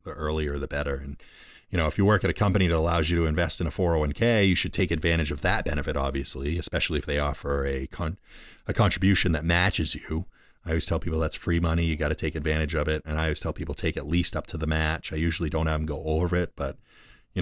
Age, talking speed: 30-49, 260 wpm